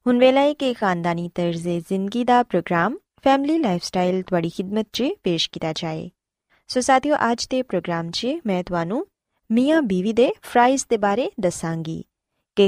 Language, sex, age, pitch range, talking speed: Punjabi, female, 20-39, 180-270 Hz, 150 wpm